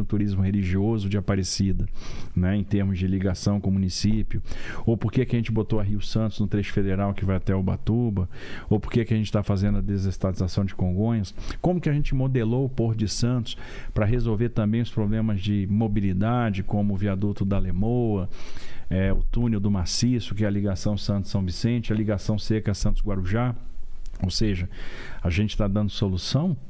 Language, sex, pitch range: Portuguese, male, 95-115 Hz